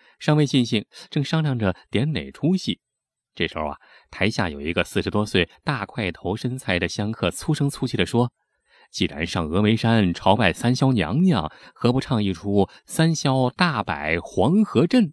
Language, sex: Chinese, male